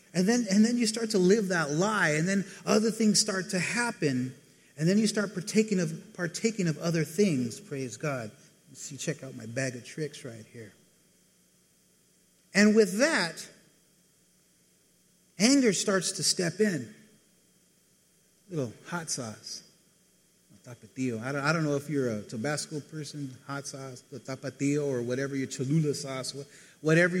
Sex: male